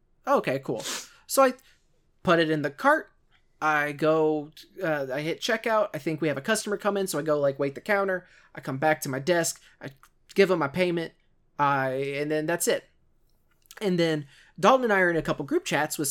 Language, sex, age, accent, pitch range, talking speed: English, male, 20-39, American, 150-185 Hz, 215 wpm